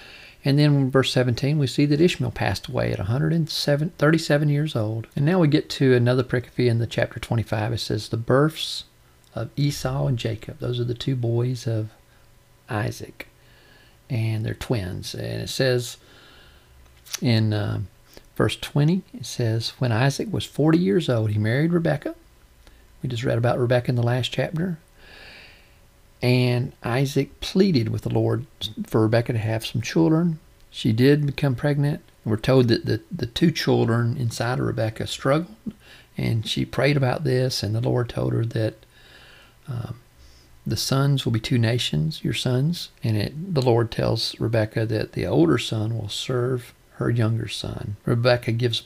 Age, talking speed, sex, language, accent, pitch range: 50-69, 165 wpm, male, English, American, 115-140 Hz